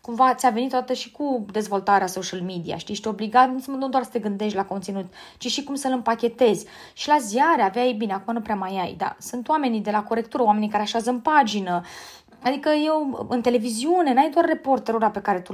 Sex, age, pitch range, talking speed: female, 20-39, 200-280 Hz, 220 wpm